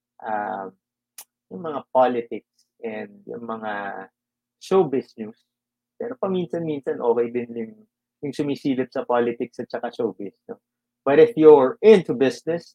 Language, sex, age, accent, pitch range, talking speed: English, male, 30-49, Filipino, 120-165 Hz, 120 wpm